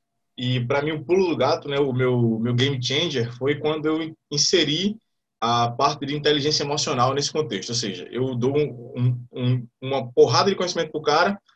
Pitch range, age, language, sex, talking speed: 130-175 Hz, 20-39, Portuguese, male, 190 wpm